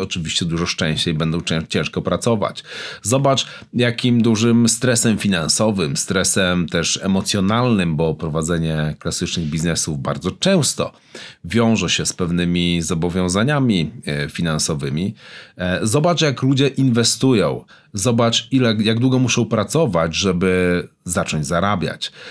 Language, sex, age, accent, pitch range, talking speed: Polish, male, 40-59, native, 95-125 Hz, 105 wpm